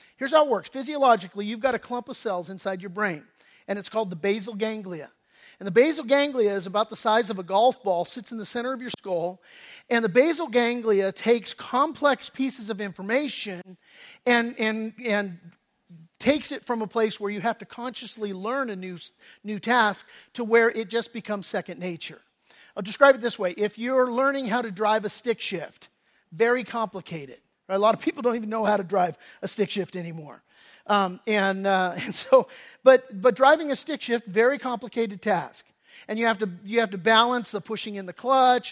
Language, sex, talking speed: English, male, 200 wpm